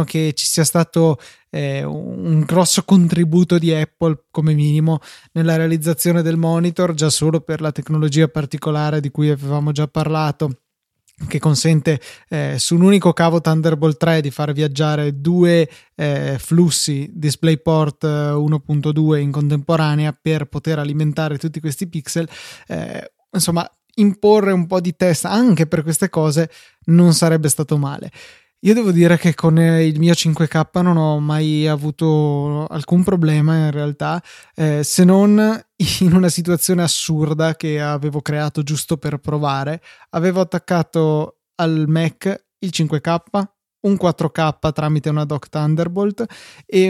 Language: Italian